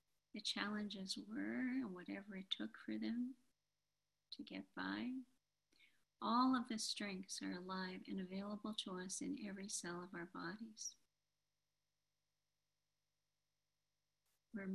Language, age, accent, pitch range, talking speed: English, 50-69, American, 150-235 Hz, 120 wpm